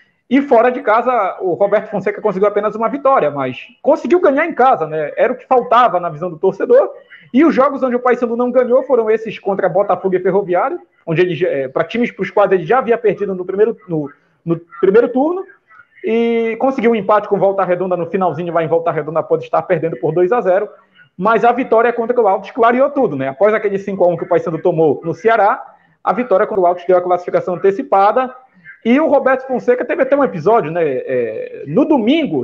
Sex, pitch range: male, 180-255 Hz